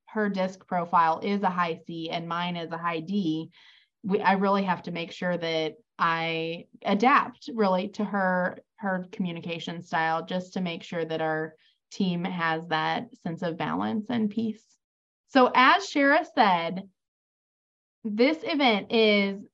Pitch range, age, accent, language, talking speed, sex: 185-240 Hz, 20-39, American, English, 150 wpm, female